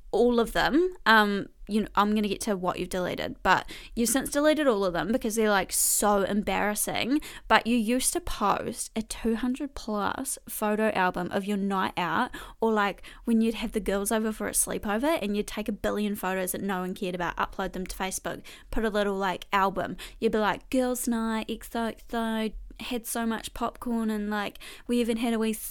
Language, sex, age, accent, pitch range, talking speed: English, female, 10-29, Australian, 200-245 Hz, 205 wpm